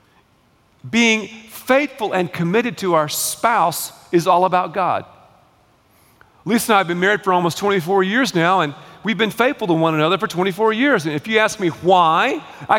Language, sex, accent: English, male, American